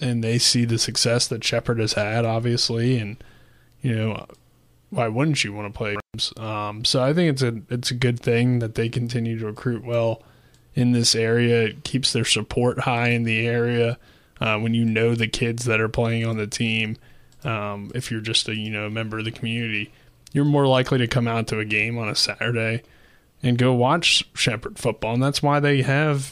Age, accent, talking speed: 20-39, American, 205 wpm